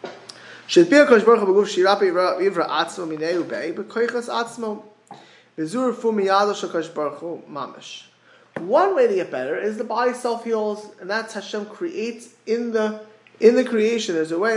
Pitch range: 180-260 Hz